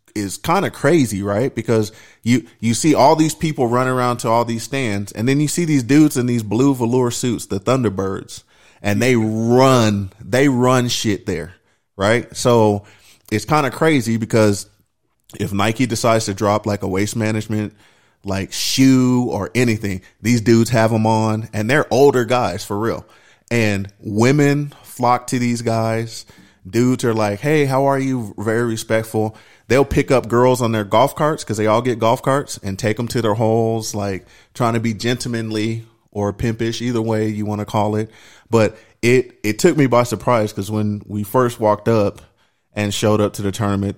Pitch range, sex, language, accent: 105-125 Hz, male, English, American